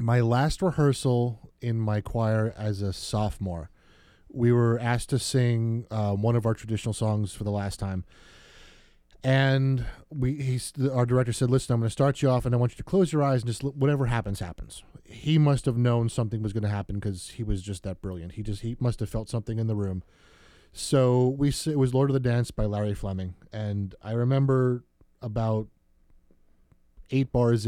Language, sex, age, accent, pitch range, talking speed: English, male, 30-49, American, 105-125 Hz, 200 wpm